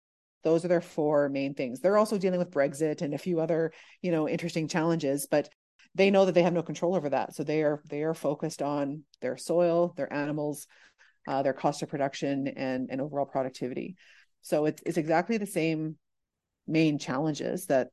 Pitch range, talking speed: 145-170 Hz, 195 wpm